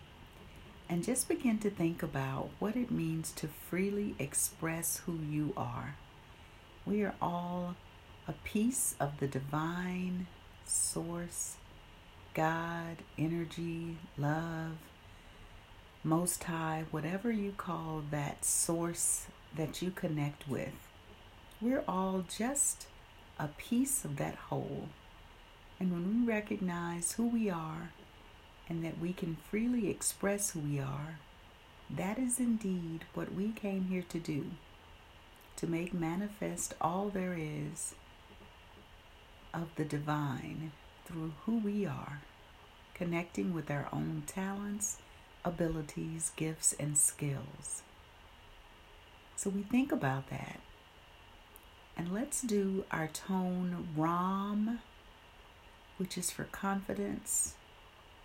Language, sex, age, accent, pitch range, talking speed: English, female, 40-59, American, 130-190 Hz, 110 wpm